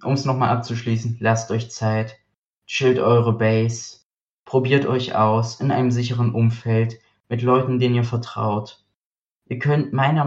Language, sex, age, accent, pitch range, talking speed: German, male, 20-39, German, 110-135 Hz, 145 wpm